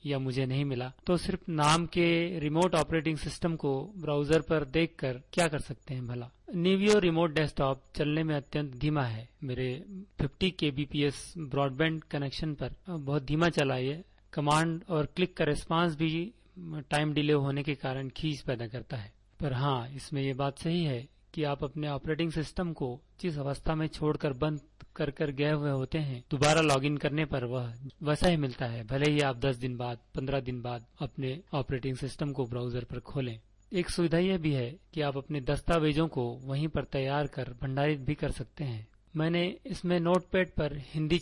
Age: 40-59